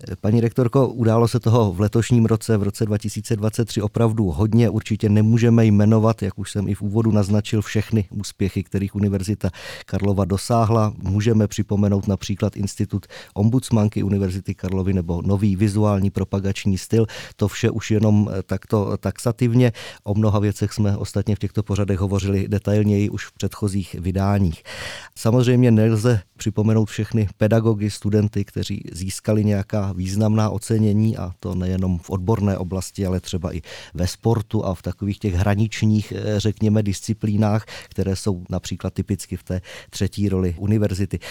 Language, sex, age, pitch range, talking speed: Czech, male, 20-39, 95-110 Hz, 145 wpm